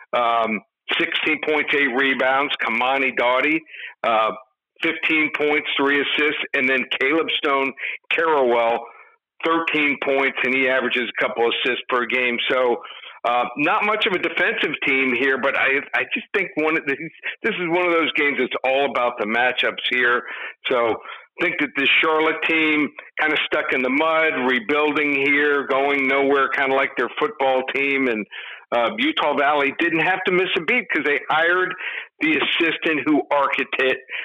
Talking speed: 165 wpm